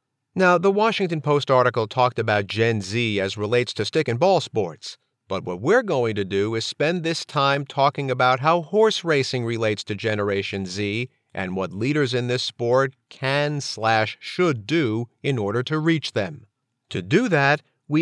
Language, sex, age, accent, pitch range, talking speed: English, male, 50-69, American, 110-160 Hz, 180 wpm